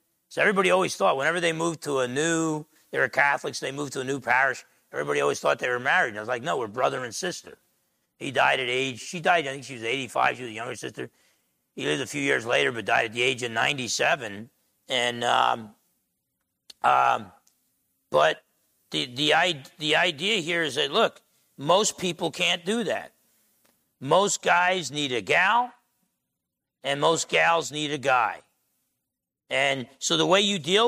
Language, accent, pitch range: English, American, 140-200 Hz